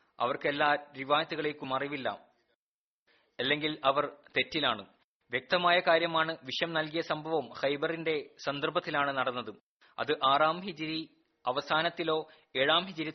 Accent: native